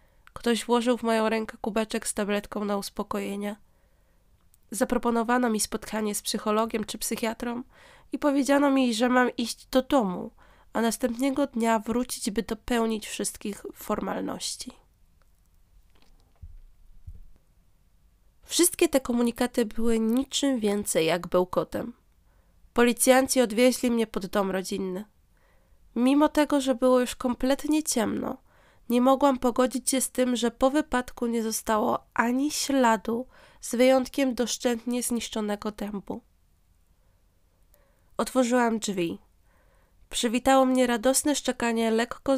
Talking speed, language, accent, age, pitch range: 110 wpm, Polish, native, 20-39, 205-255 Hz